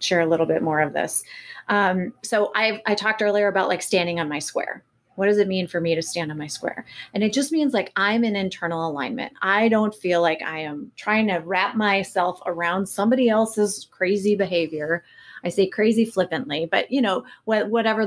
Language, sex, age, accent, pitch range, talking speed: English, female, 30-49, American, 175-215 Hz, 210 wpm